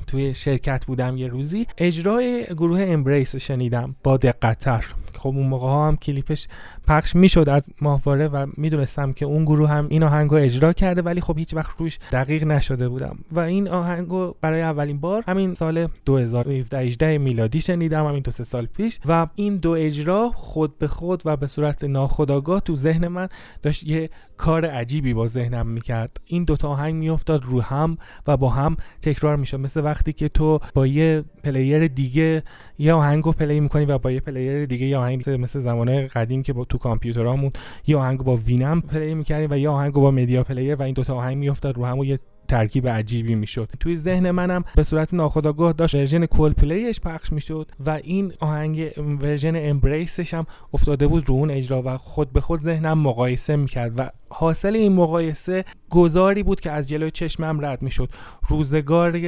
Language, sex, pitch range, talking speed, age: Persian, male, 135-165 Hz, 185 wpm, 30-49